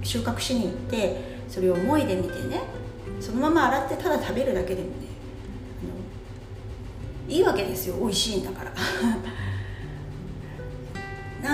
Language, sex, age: Japanese, female, 40-59